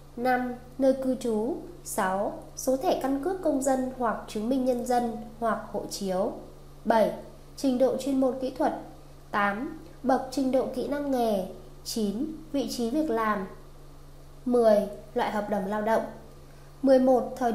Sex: female